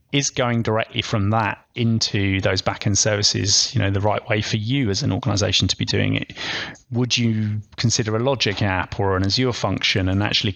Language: English